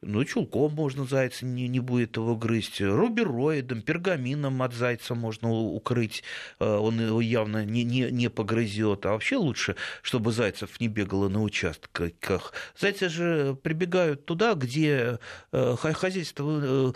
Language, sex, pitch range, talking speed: Russian, male, 115-160 Hz, 130 wpm